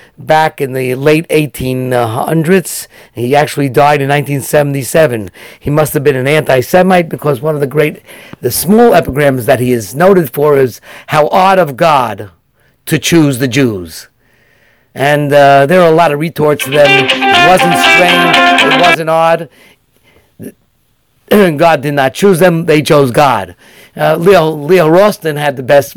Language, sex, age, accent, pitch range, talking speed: English, male, 50-69, American, 135-170 Hz, 160 wpm